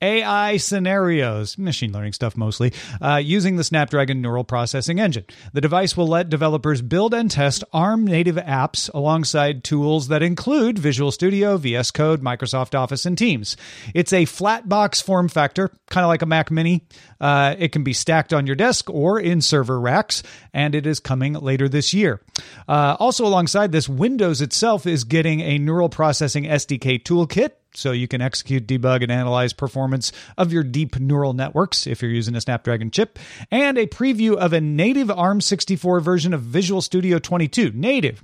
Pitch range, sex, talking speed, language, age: 135-175 Hz, male, 175 wpm, English, 40-59